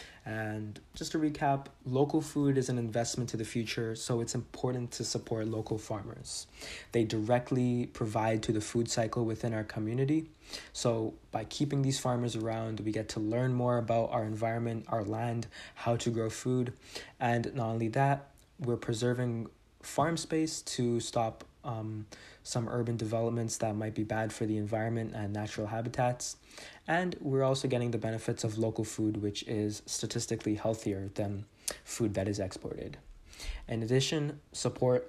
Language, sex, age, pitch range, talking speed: English, male, 20-39, 110-125 Hz, 160 wpm